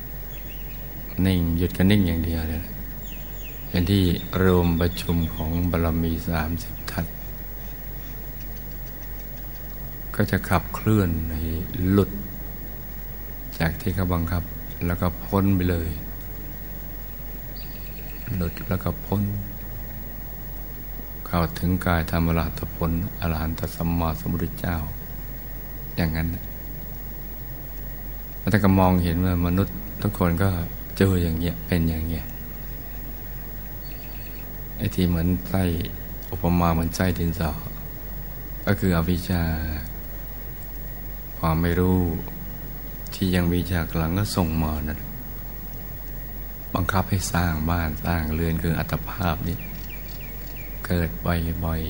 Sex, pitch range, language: male, 80-90 Hz, Thai